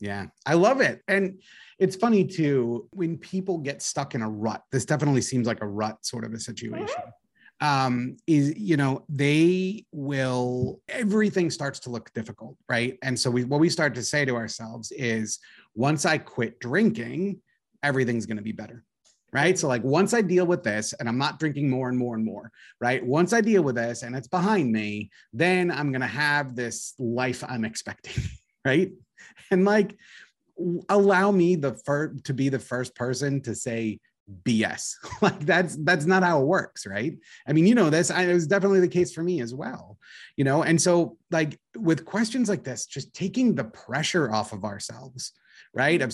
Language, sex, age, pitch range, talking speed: English, male, 30-49, 120-175 Hz, 190 wpm